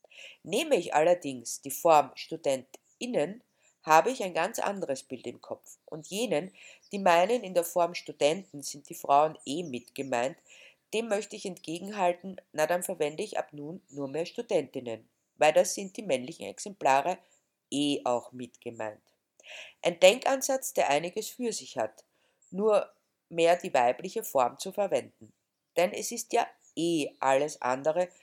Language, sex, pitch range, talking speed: German, female, 145-210 Hz, 150 wpm